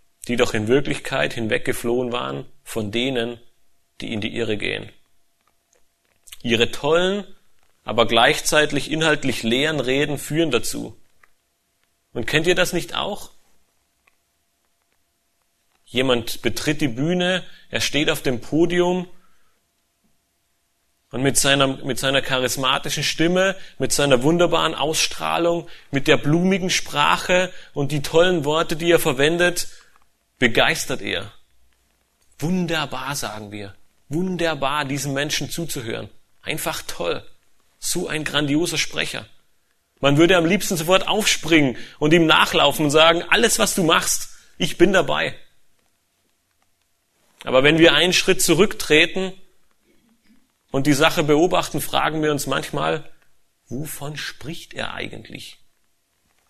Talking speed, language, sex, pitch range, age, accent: 115 wpm, German, male, 125-170 Hz, 30-49, German